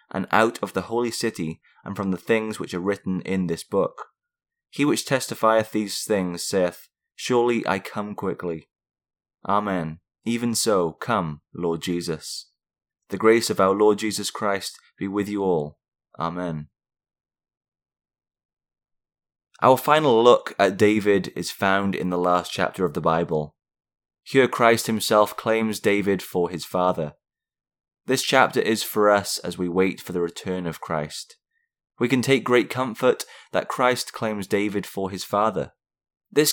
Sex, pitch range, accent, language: male, 90-120 Hz, British, English